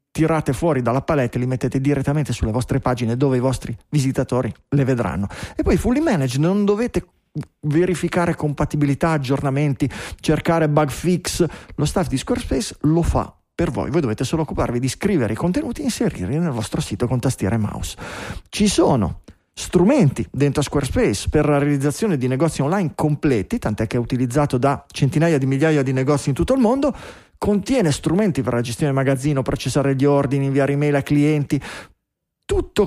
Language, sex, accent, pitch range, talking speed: Italian, male, native, 135-170 Hz, 175 wpm